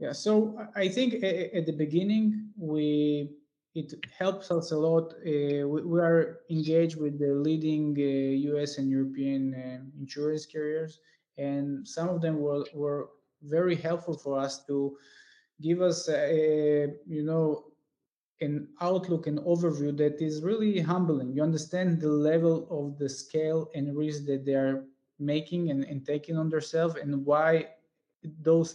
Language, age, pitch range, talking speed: English, 20-39, 145-165 Hz, 150 wpm